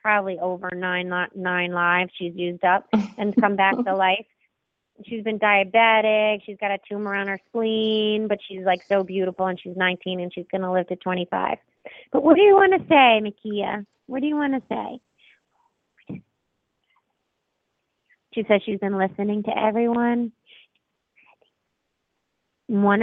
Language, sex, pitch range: English, female, 185-225 Hz